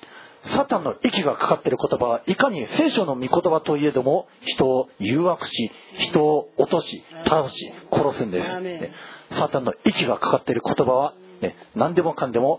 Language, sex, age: Japanese, male, 40-59